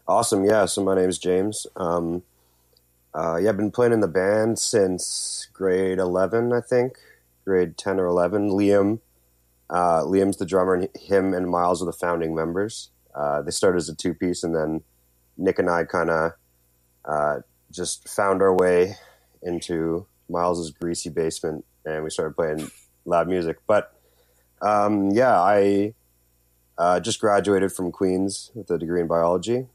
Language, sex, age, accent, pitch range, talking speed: English, male, 30-49, American, 75-95 Hz, 160 wpm